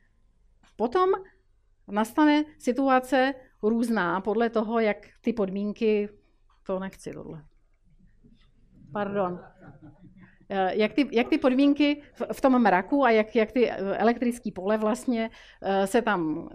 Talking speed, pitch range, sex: 110 wpm, 200-250 Hz, female